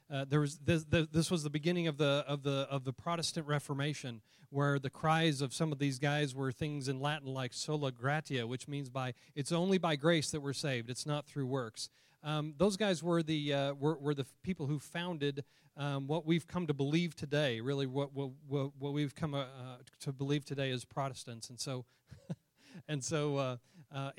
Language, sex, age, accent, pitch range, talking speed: English, male, 40-59, American, 145-175 Hz, 205 wpm